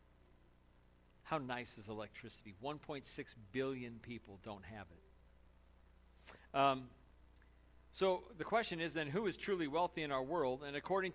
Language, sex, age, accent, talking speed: English, male, 50-69, American, 135 wpm